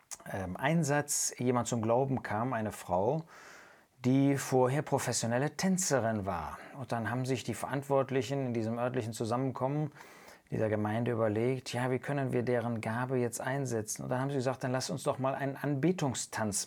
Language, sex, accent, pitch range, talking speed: German, male, German, 120-145 Hz, 160 wpm